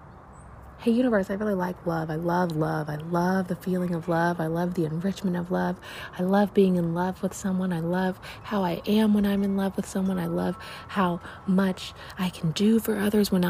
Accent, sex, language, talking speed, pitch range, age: American, female, English, 220 wpm, 165-200 Hz, 20-39